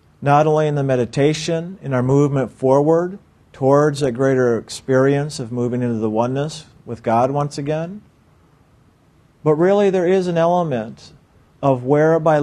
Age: 50-69